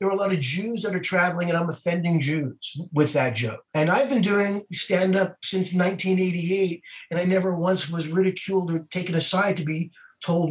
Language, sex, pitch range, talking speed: English, male, 145-175 Hz, 200 wpm